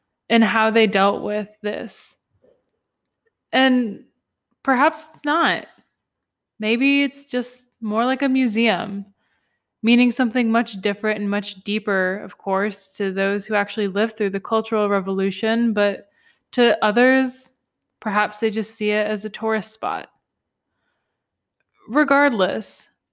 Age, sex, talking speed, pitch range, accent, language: 20-39, female, 125 wpm, 195-245 Hz, American, English